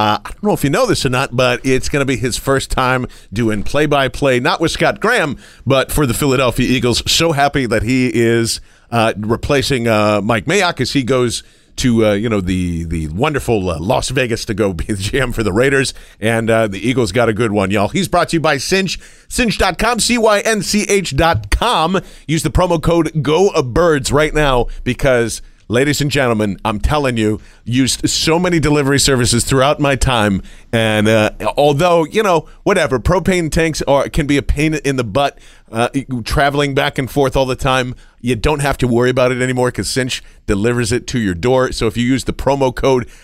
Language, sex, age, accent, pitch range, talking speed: English, male, 40-59, American, 115-150 Hz, 200 wpm